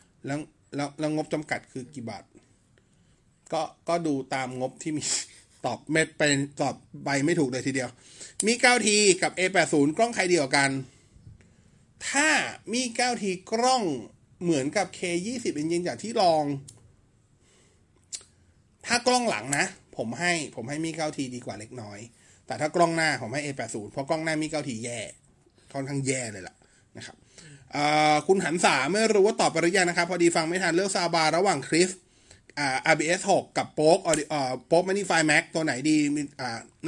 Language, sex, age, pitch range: Thai, male, 30-49, 130-175 Hz